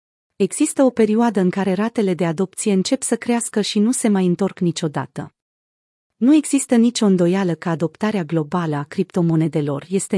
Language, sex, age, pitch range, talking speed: Romanian, female, 30-49, 175-220 Hz, 160 wpm